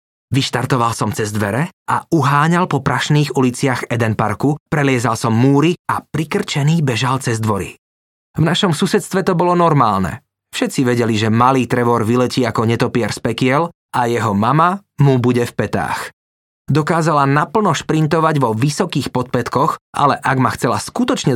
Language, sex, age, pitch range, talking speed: Slovak, male, 20-39, 120-165 Hz, 150 wpm